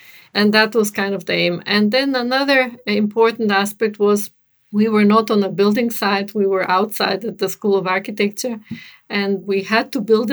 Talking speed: 190 wpm